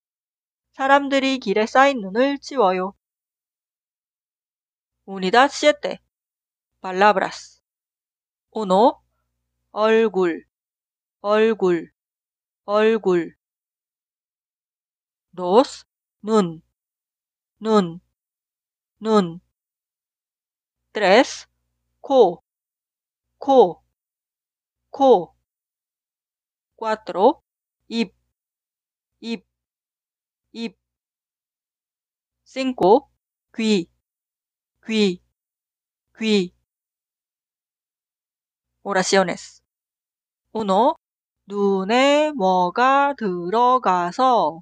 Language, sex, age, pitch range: Korean, female, 40-59, 180-255 Hz